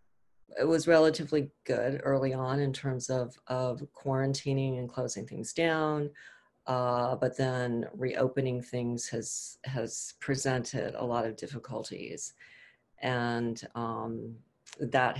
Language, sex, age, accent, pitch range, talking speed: English, female, 40-59, American, 125-145 Hz, 120 wpm